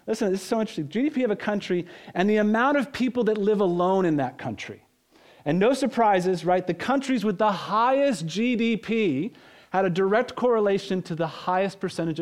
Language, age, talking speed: English, 40-59, 185 wpm